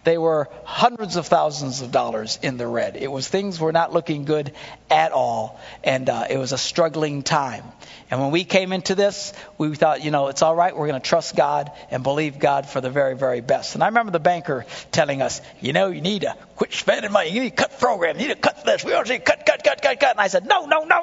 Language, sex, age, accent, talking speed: English, male, 50-69, American, 255 wpm